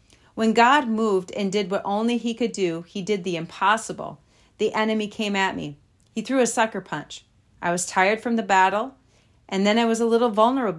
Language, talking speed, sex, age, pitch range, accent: English, 205 wpm, female, 40-59, 175-235 Hz, American